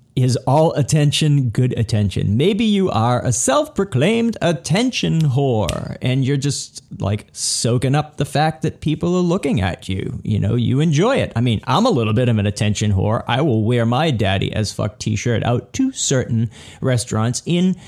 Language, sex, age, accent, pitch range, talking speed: English, male, 40-59, American, 105-140 Hz, 175 wpm